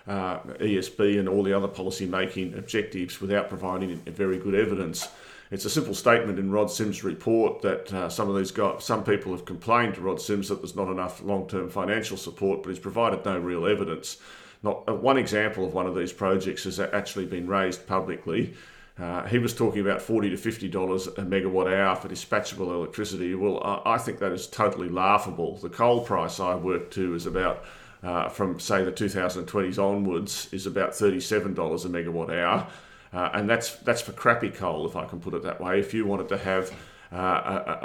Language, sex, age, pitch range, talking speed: English, male, 40-59, 95-105 Hz, 195 wpm